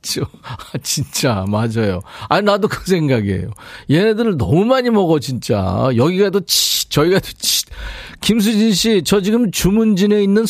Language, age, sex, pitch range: Korean, 40-59, male, 130-185 Hz